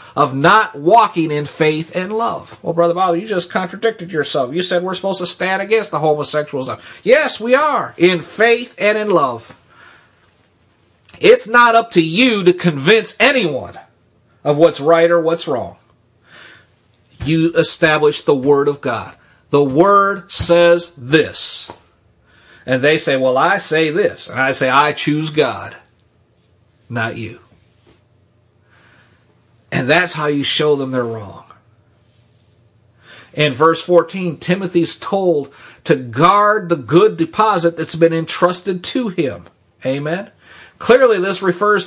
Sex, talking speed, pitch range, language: male, 140 wpm, 120-200 Hz, English